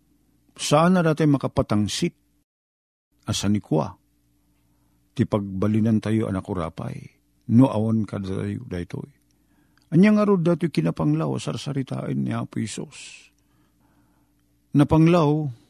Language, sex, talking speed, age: Filipino, male, 95 wpm, 50-69